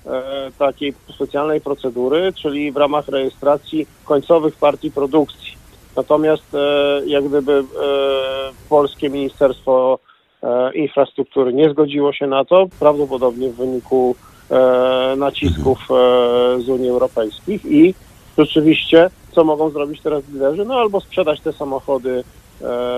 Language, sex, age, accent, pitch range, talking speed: Polish, male, 50-69, native, 130-155 Hz, 120 wpm